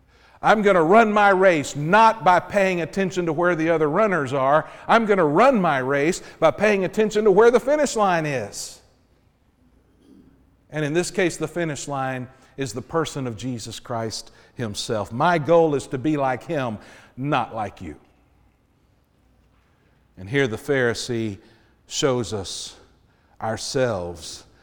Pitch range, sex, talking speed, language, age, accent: 105-160 Hz, male, 150 wpm, English, 50-69, American